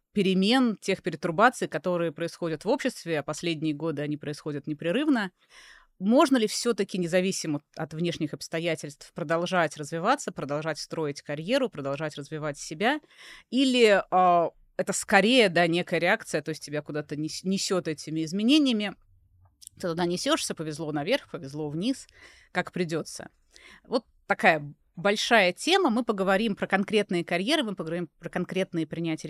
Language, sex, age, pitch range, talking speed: Russian, female, 20-39, 155-200 Hz, 135 wpm